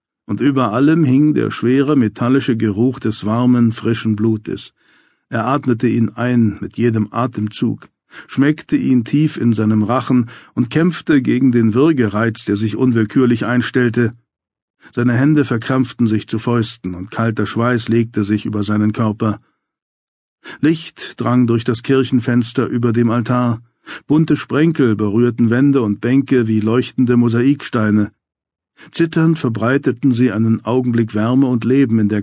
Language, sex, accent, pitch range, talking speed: German, male, German, 110-130 Hz, 140 wpm